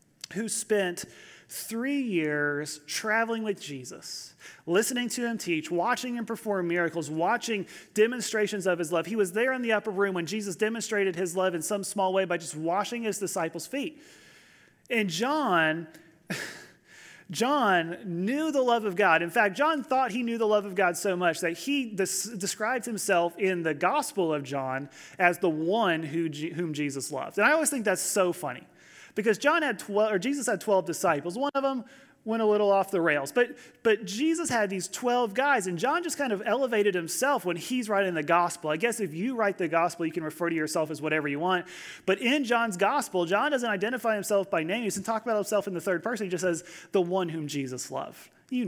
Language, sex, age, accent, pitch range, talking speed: English, male, 30-49, American, 170-225 Hz, 205 wpm